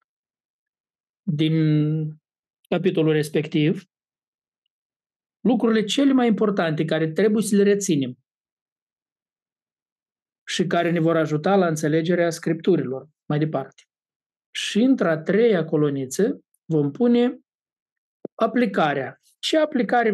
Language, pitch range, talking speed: Romanian, 155-210 Hz, 90 wpm